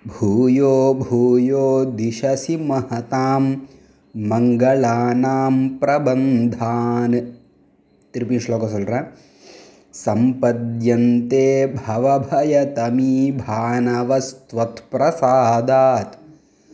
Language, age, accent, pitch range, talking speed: Tamil, 20-39, native, 115-135 Hz, 55 wpm